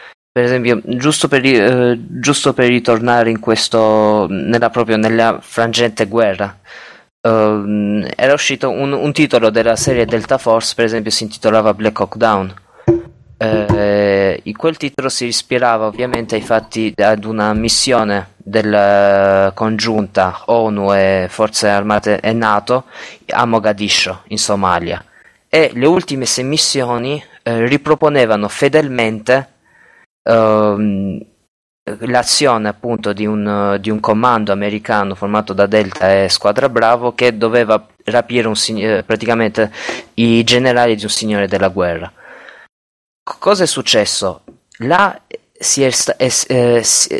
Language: Italian